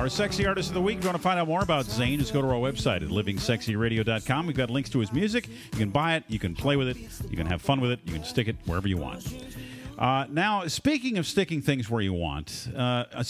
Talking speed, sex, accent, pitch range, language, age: 270 wpm, male, American, 105-155 Hz, English, 50-69